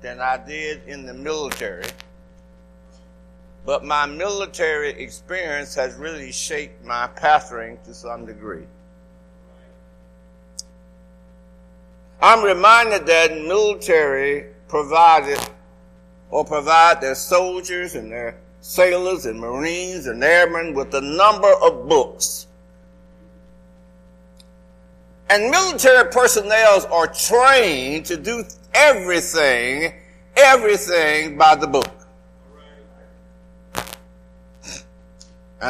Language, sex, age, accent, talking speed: English, male, 60-79, American, 85 wpm